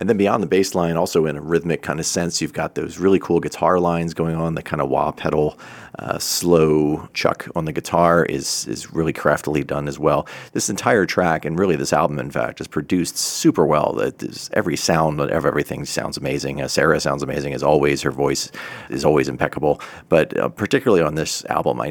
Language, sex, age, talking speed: English, male, 40-59, 215 wpm